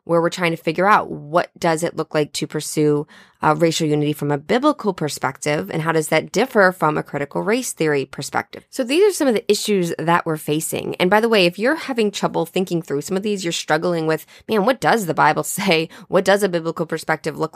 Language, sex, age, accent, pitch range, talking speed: English, female, 20-39, American, 160-200 Hz, 235 wpm